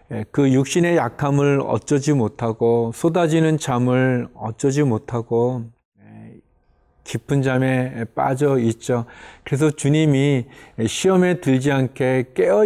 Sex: male